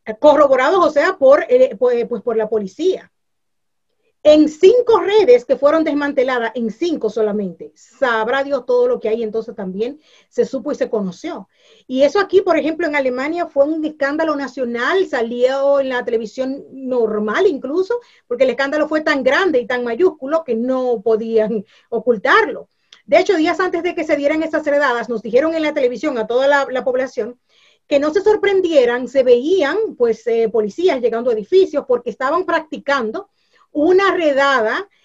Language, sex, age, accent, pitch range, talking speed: Spanish, female, 40-59, American, 245-350 Hz, 165 wpm